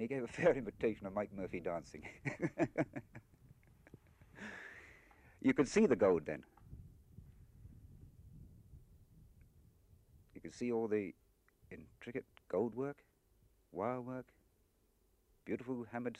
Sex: male